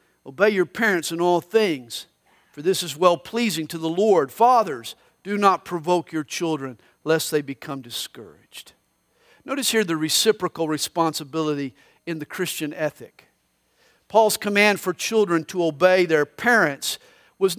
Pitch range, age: 160-220 Hz, 50-69